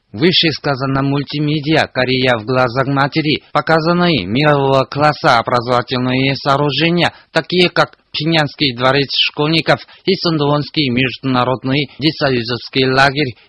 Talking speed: 100 wpm